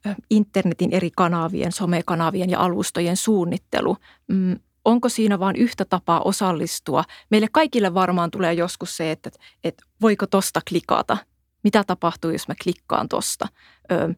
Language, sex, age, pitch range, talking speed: Finnish, female, 30-49, 175-210 Hz, 125 wpm